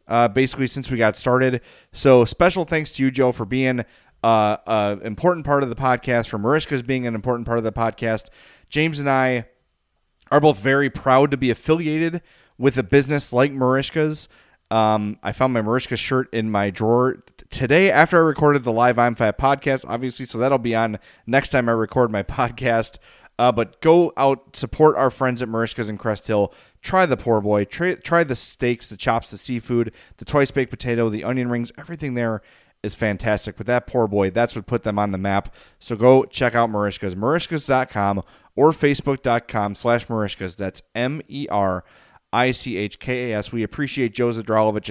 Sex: male